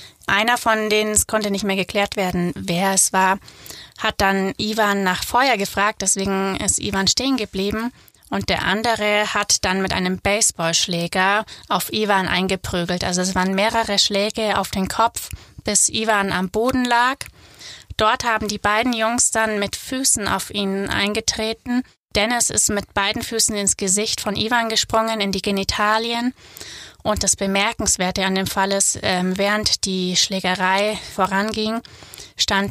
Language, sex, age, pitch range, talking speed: German, female, 20-39, 195-225 Hz, 150 wpm